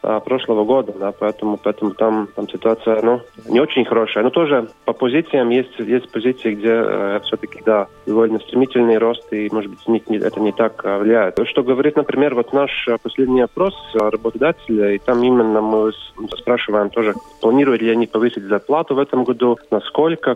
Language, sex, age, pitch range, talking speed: Russian, male, 20-39, 110-125 Hz, 165 wpm